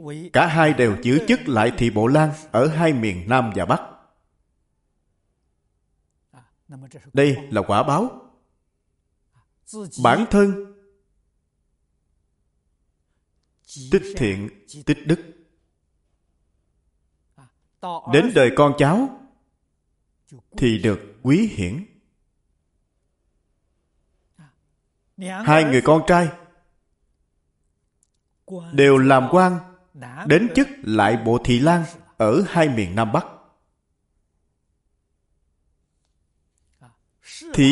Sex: male